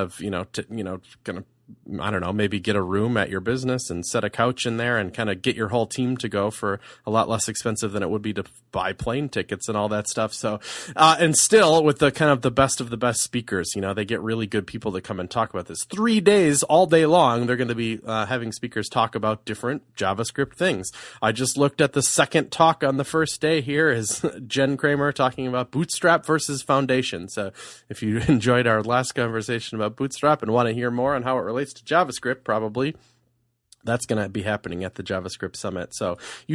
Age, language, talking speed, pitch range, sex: 30-49, English, 235 wpm, 105-135 Hz, male